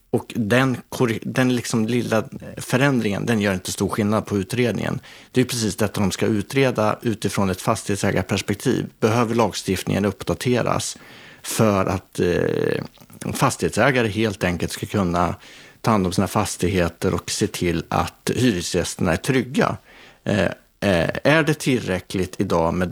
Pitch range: 90-115 Hz